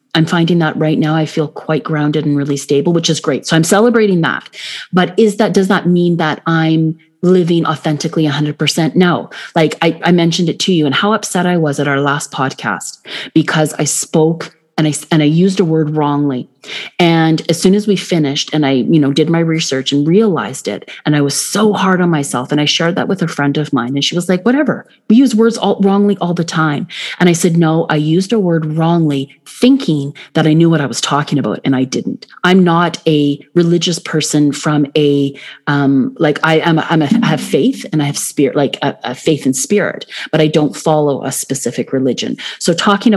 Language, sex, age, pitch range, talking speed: English, female, 30-49, 150-185 Hz, 220 wpm